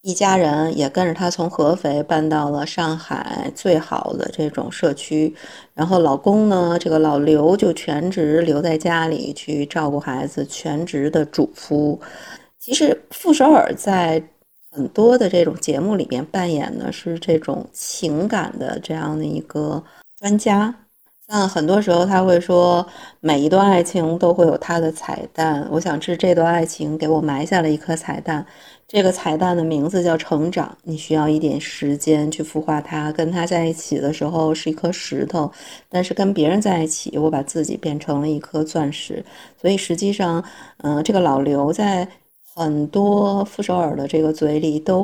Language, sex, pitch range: Chinese, female, 155-180 Hz